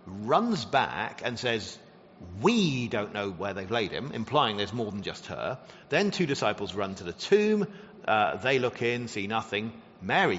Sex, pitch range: male, 105-165 Hz